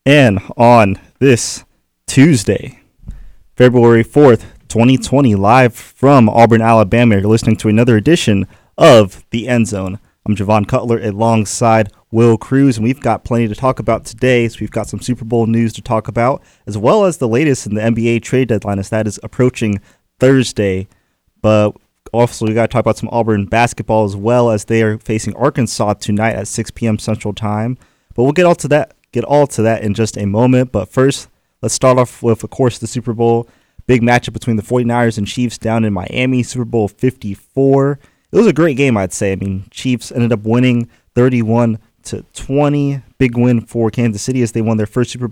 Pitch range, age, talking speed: 110-130 Hz, 20-39, 195 wpm